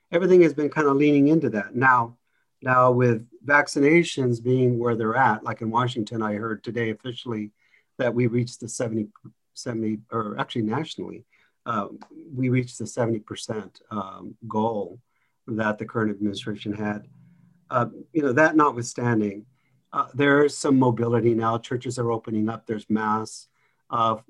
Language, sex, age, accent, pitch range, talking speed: English, male, 50-69, American, 115-145 Hz, 155 wpm